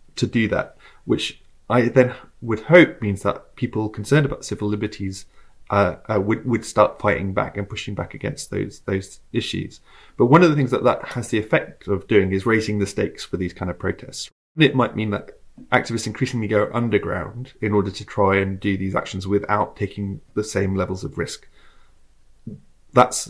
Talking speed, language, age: 190 wpm, English, 30-49